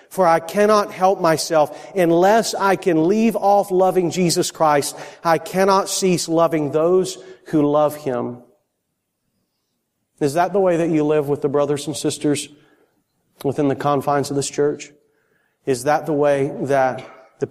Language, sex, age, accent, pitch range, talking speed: English, male, 40-59, American, 135-165 Hz, 155 wpm